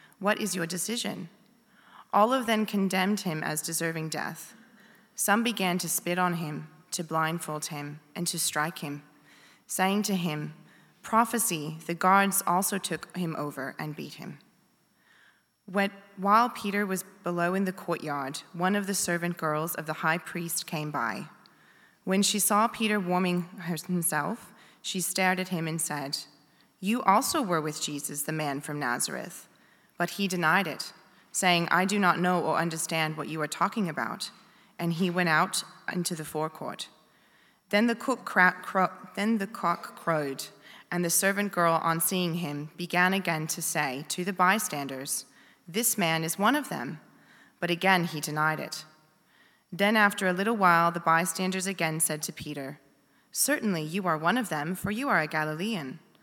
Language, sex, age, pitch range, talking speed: English, female, 20-39, 155-195 Hz, 160 wpm